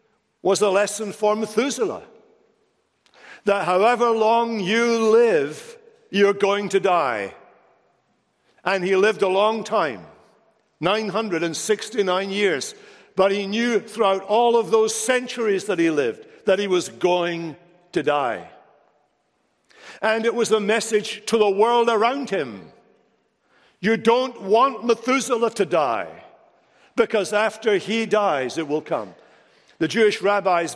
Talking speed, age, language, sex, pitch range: 125 wpm, 60-79, English, male, 175-225 Hz